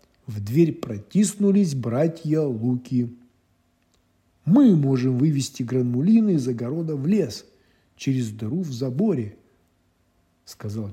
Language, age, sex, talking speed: Russian, 50-69, male, 100 wpm